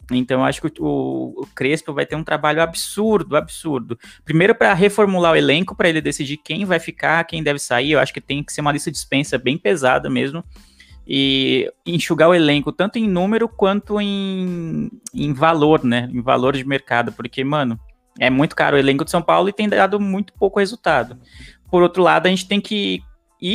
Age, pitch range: 20-39, 135-180 Hz